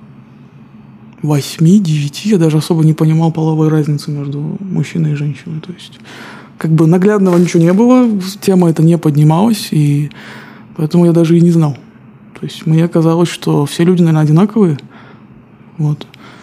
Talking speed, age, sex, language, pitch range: 150 wpm, 20-39, male, Russian, 155-185 Hz